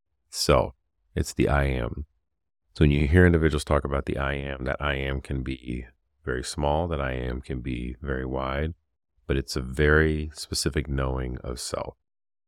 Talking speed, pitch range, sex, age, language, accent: 180 wpm, 65-75 Hz, male, 30-49, English, American